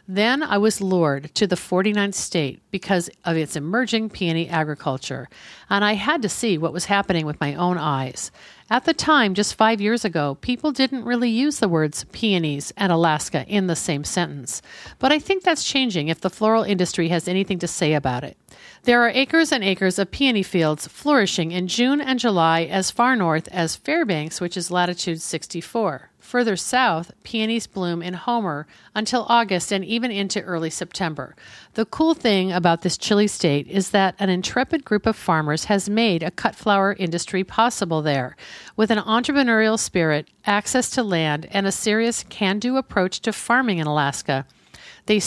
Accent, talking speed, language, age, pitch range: American, 180 wpm, English, 50-69, 165-220 Hz